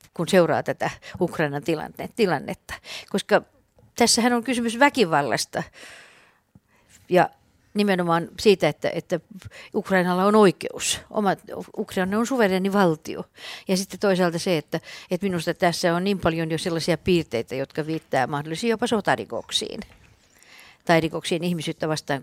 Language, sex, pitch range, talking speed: Finnish, female, 165-205 Hz, 120 wpm